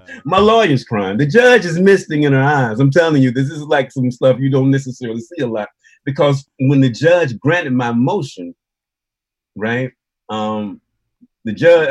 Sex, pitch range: male, 110-140 Hz